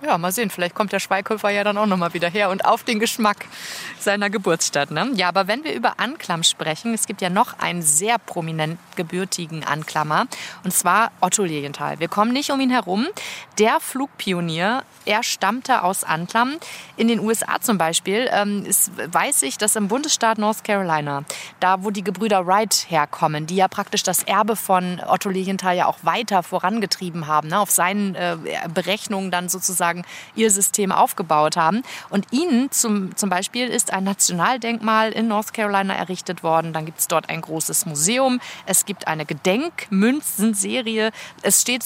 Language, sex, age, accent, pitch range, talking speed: German, female, 30-49, German, 175-225 Hz, 175 wpm